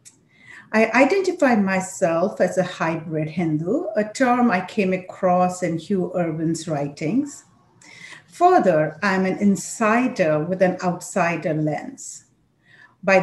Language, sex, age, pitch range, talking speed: English, female, 50-69, 170-235 Hz, 115 wpm